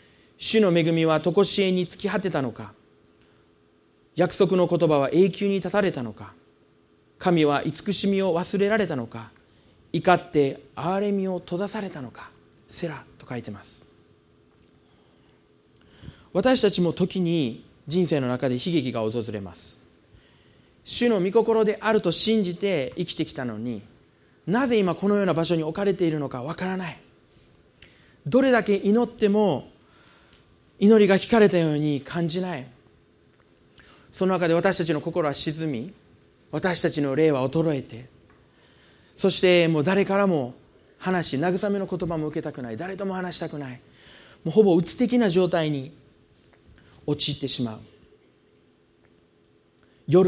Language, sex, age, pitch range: Japanese, male, 30-49, 120-190 Hz